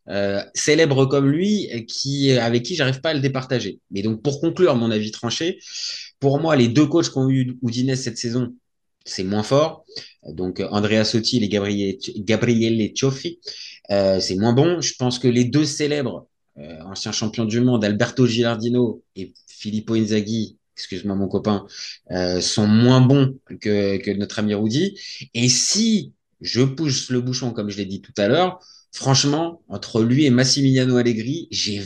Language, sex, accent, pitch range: French, male, French, 110-135 Hz